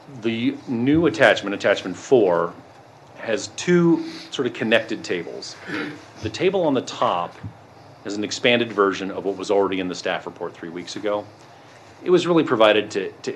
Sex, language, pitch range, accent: male, English, 100-130 Hz, American